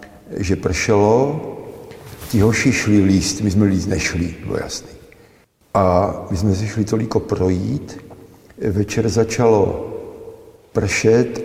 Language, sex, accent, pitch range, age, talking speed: Czech, male, native, 95-110 Hz, 50-69, 110 wpm